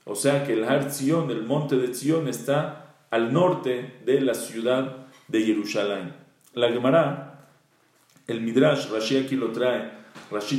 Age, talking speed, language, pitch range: 40-59, 155 wpm, English, 120-140 Hz